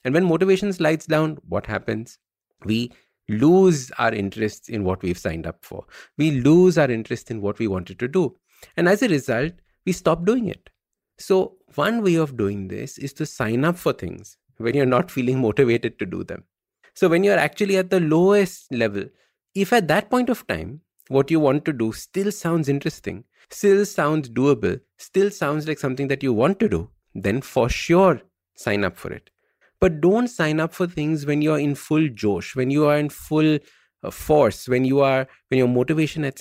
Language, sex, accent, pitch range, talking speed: English, male, Indian, 120-170 Hz, 200 wpm